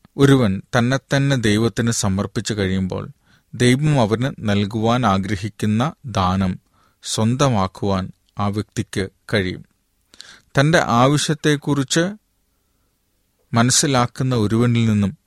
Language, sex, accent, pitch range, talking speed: Malayalam, male, native, 100-125 Hz, 70 wpm